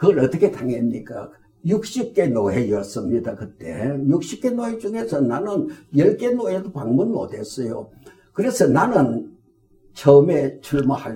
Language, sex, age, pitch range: Korean, male, 60-79, 130-175 Hz